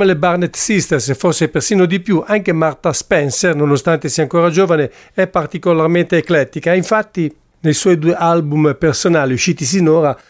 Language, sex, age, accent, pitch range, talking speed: English, male, 50-69, Italian, 145-170 Hz, 150 wpm